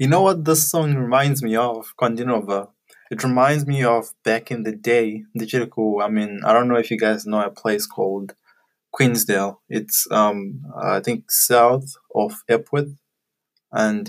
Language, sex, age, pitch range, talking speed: English, male, 20-39, 110-130 Hz, 160 wpm